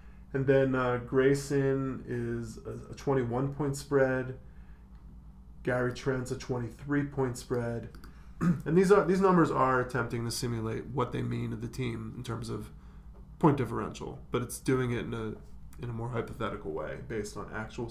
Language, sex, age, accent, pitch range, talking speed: English, male, 20-39, American, 115-140 Hz, 160 wpm